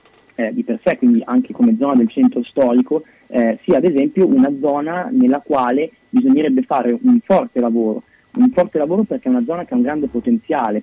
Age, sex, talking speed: 20-39, male, 200 wpm